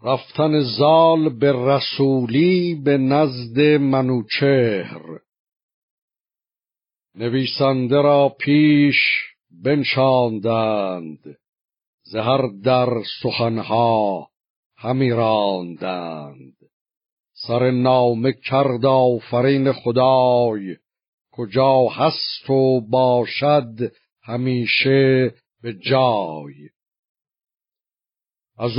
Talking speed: 60 wpm